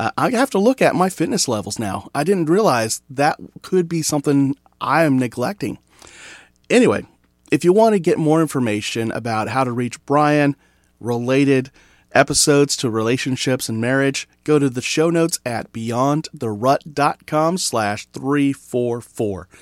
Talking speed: 145 wpm